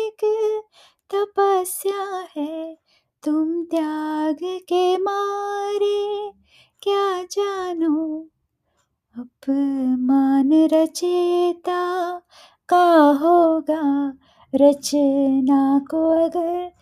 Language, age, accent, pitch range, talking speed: English, 20-39, Indian, 310-400 Hz, 55 wpm